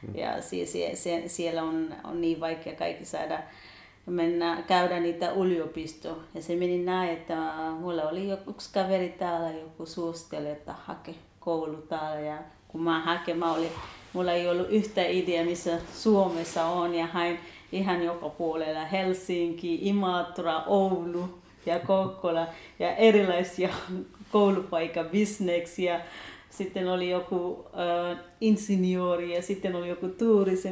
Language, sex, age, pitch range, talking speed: Finnish, female, 30-49, 165-195 Hz, 130 wpm